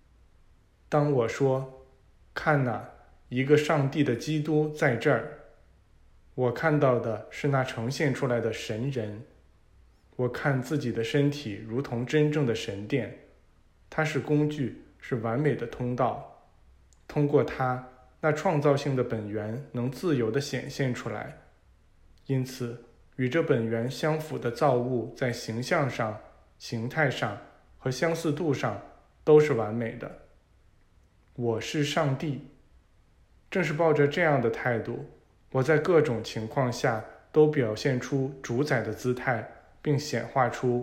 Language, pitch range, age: Chinese, 110-145 Hz, 20-39